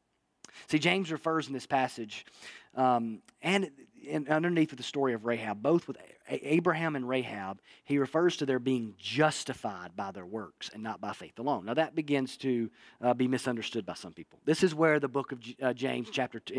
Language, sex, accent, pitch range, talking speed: English, male, American, 125-155 Hz, 195 wpm